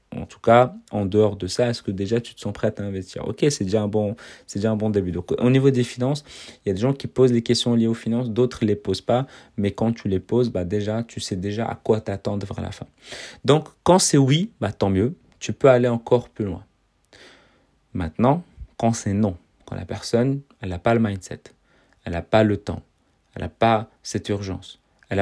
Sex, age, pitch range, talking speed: male, 30-49, 100-120 Hz, 235 wpm